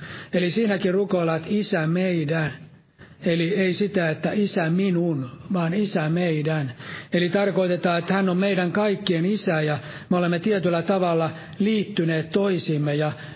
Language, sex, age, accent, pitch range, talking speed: Finnish, male, 60-79, native, 155-190 Hz, 135 wpm